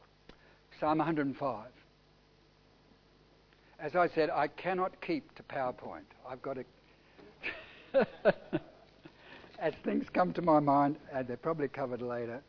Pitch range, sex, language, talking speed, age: 130-190 Hz, male, English, 115 wpm, 60-79